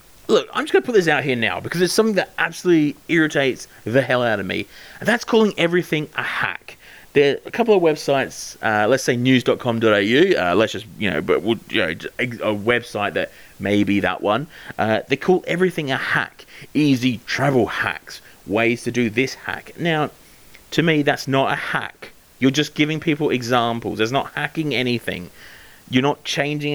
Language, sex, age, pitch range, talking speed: English, male, 30-49, 110-145 Hz, 190 wpm